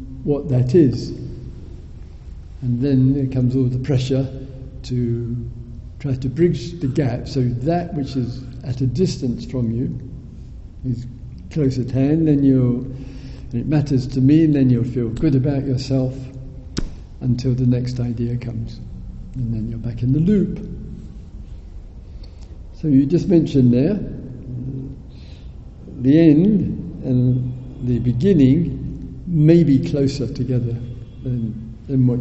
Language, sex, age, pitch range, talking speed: English, male, 60-79, 110-140 Hz, 130 wpm